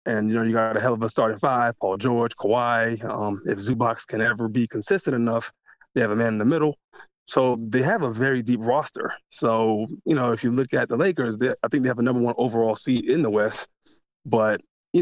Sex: male